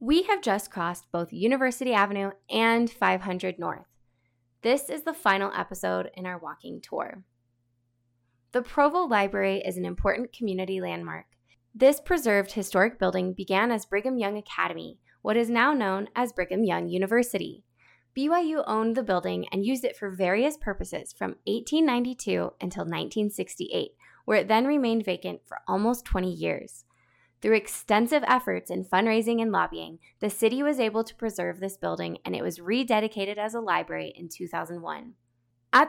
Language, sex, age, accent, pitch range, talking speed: English, female, 20-39, American, 170-235 Hz, 155 wpm